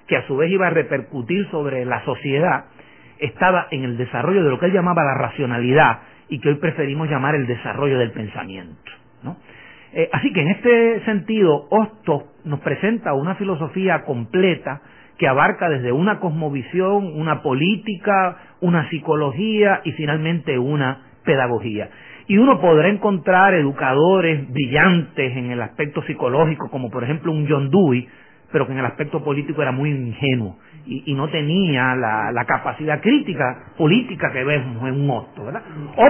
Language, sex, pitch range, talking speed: Spanish, male, 135-185 Hz, 160 wpm